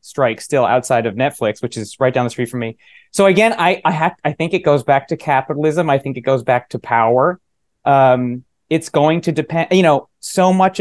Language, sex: English, male